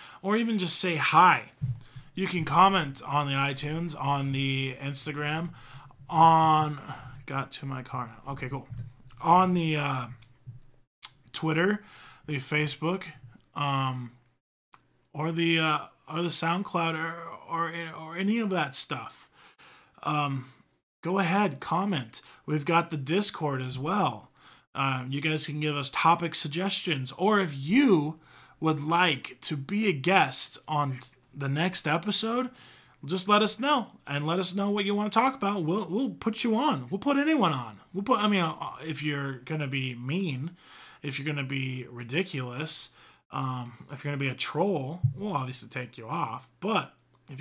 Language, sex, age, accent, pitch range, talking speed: English, male, 20-39, American, 135-180 Hz, 160 wpm